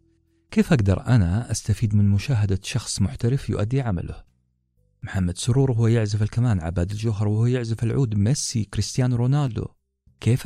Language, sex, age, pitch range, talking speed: Arabic, male, 40-59, 90-115 Hz, 140 wpm